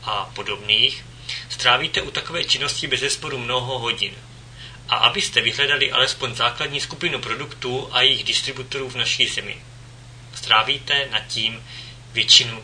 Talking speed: 130 wpm